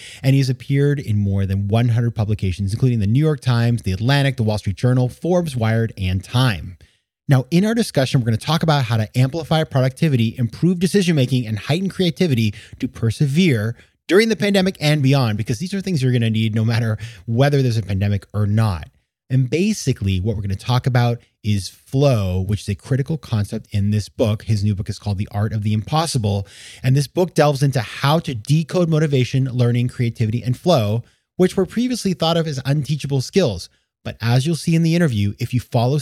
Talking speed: 205 wpm